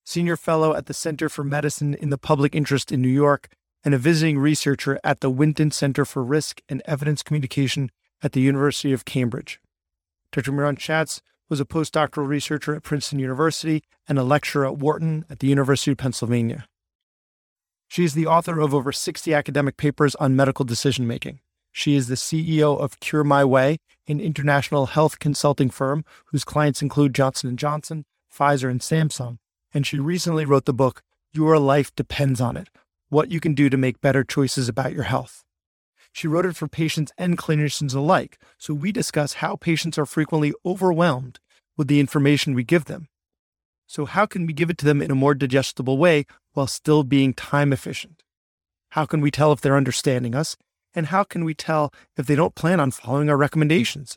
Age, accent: 30-49, American